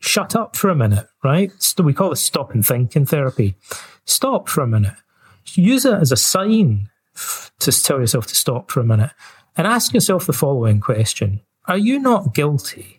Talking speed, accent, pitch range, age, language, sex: 190 wpm, British, 110-160 Hz, 40-59, English, male